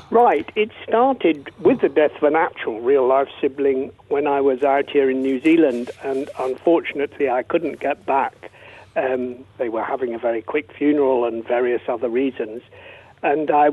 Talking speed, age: 175 wpm, 60-79